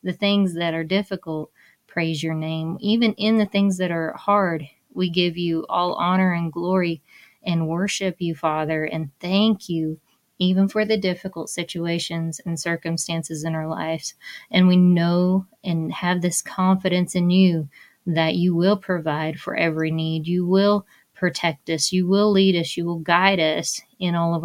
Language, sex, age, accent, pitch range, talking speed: English, female, 20-39, American, 160-185 Hz, 170 wpm